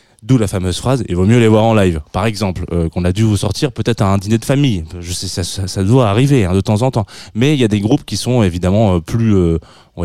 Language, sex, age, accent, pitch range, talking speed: French, male, 20-39, French, 95-125 Hz, 305 wpm